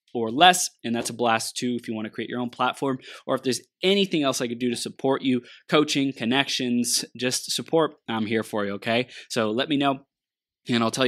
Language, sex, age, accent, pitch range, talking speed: English, male, 20-39, American, 115-140 Hz, 225 wpm